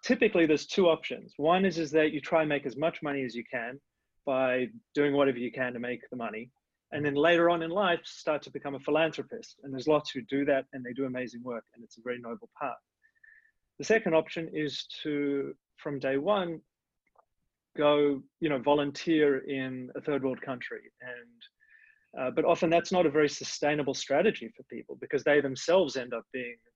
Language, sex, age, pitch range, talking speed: English, male, 30-49, 130-170 Hz, 200 wpm